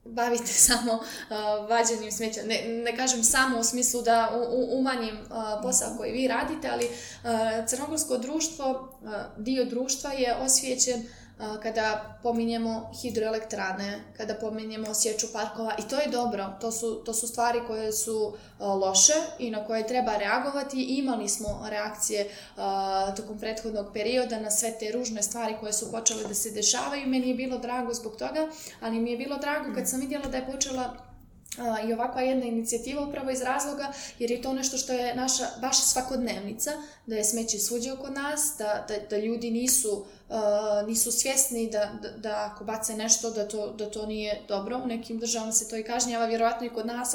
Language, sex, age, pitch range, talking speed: English, female, 20-39, 215-255 Hz, 180 wpm